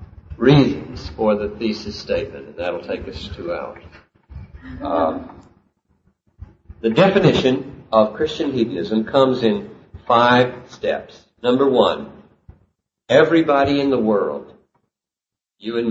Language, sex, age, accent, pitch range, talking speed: English, male, 50-69, American, 110-165 Hz, 110 wpm